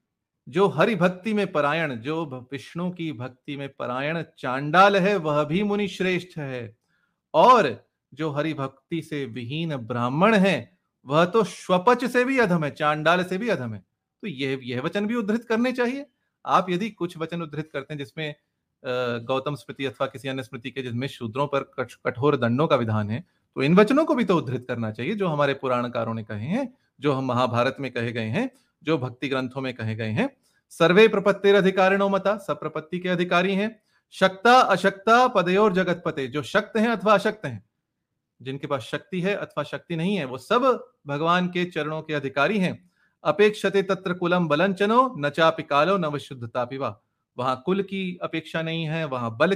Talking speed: 130 wpm